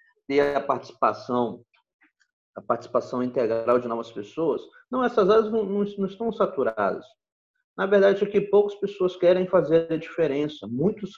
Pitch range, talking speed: 135-220 Hz, 145 wpm